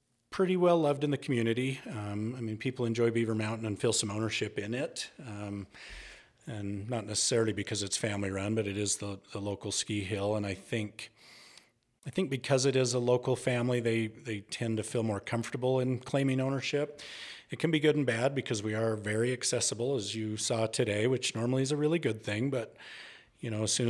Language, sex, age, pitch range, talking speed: English, male, 40-59, 105-125 Hz, 205 wpm